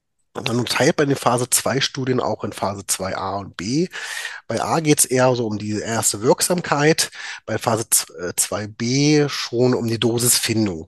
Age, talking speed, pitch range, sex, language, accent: 30-49, 175 wpm, 105-125 Hz, male, German, German